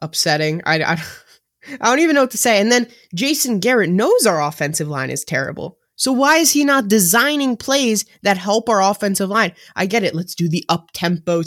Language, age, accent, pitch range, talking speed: English, 20-39, American, 160-220 Hz, 200 wpm